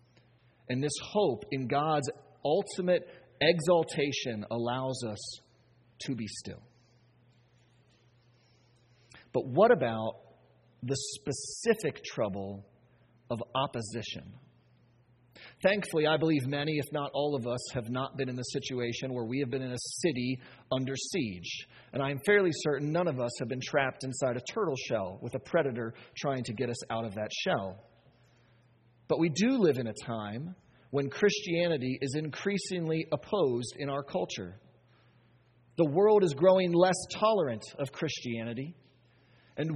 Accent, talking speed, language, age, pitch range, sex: American, 140 wpm, English, 40-59, 120-180 Hz, male